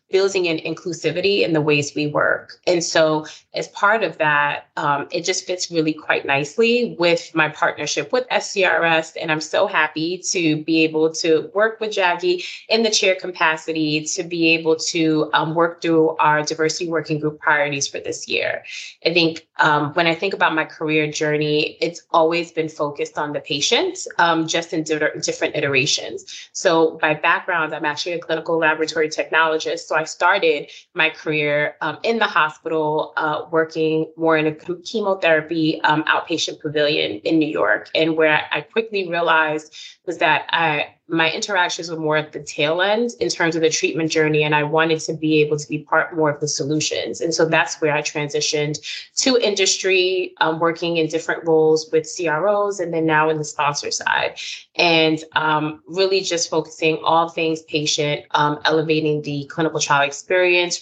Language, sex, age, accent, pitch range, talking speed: English, female, 20-39, American, 155-175 Hz, 175 wpm